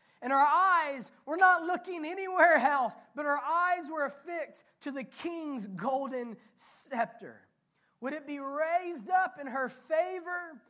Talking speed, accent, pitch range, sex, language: 145 wpm, American, 245-345 Hz, male, English